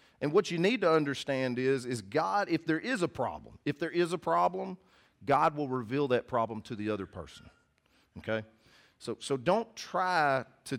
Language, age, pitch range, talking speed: English, 40-59, 105-150 Hz, 190 wpm